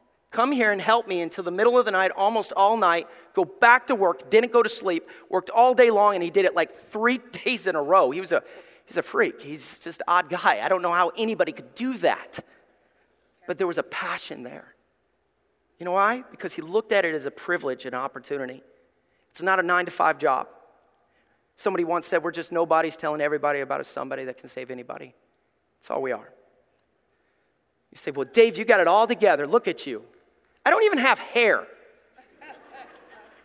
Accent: American